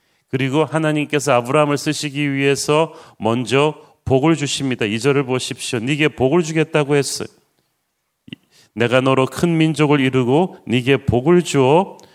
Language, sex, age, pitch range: Korean, male, 40-59, 125-155 Hz